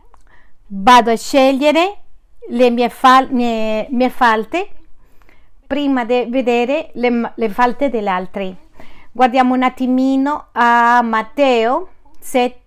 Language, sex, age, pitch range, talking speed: Spanish, female, 40-59, 230-280 Hz, 105 wpm